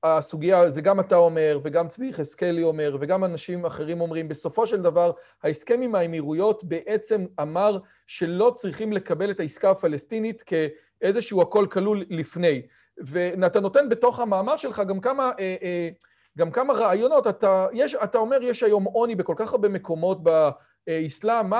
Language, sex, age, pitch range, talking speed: Hebrew, male, 40-59, 175-245 Hz, 150 wpm